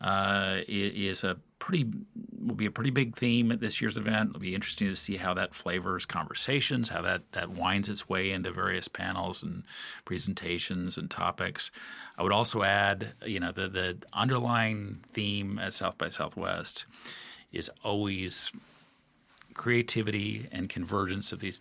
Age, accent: 40-59, American